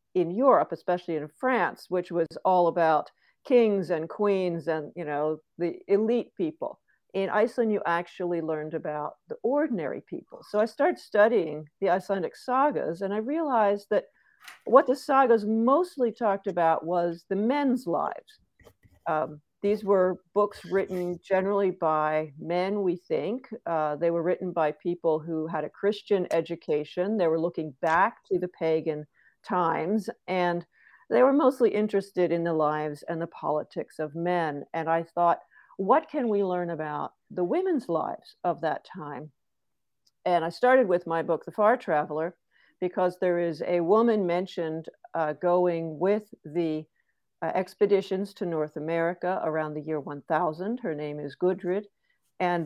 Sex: female